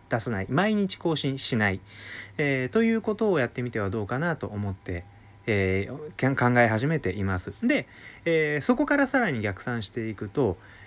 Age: 30-49